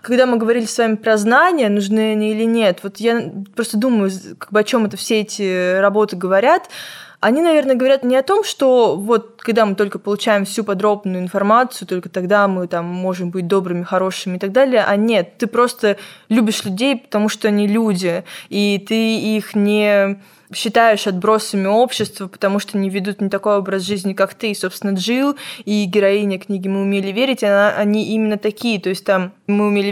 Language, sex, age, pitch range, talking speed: Russian, female, 20-39, 195-225 Hz, 195 wpm